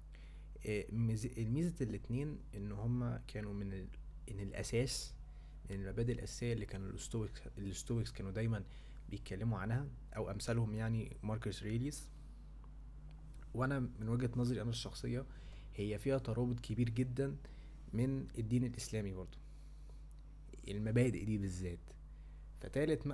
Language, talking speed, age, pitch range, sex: Arabic, 105 wpm, 20-39, 100-125 Hz, male